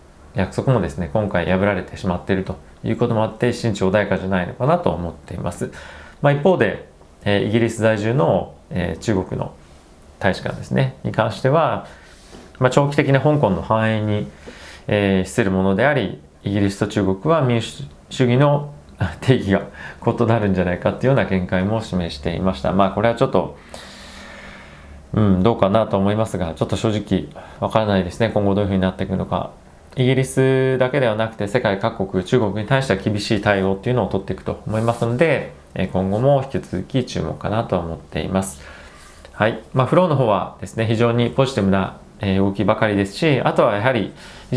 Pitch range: 95-120 Hz